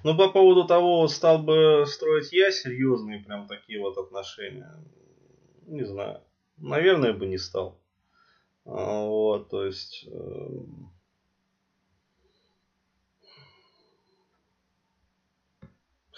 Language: Russian